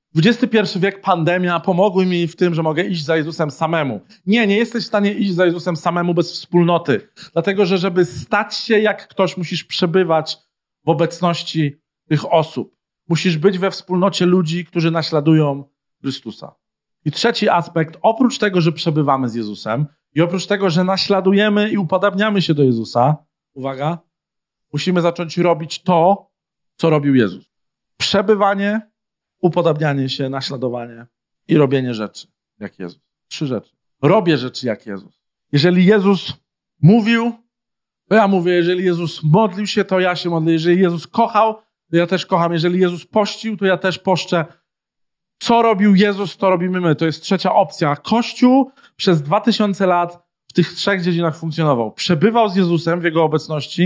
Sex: male